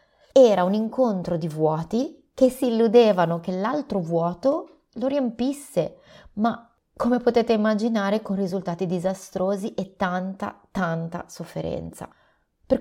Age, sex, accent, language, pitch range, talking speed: 30-49, female, native, Italian, 170-220 Hz, 115 wpm